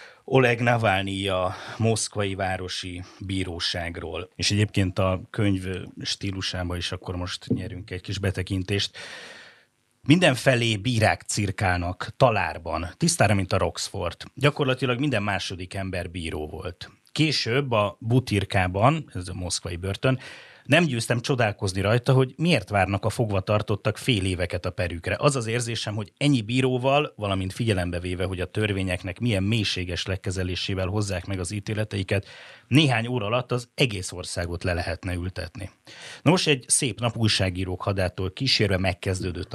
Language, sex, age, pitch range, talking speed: Hungarian, male, 30-49, 95-120 Hz, 135 wpm